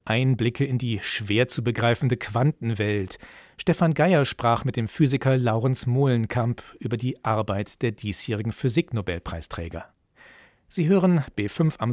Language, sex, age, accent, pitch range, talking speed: German, male, 40-59, German, 115-150 Hz, 125 wpm